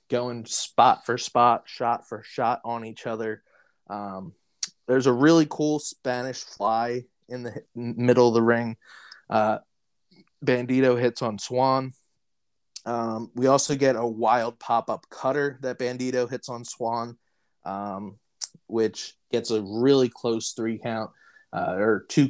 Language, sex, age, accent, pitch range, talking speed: English, male, 20-39, American, 115-130 Hz, 145 wpm